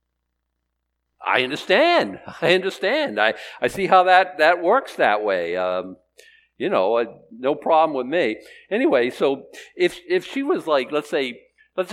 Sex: male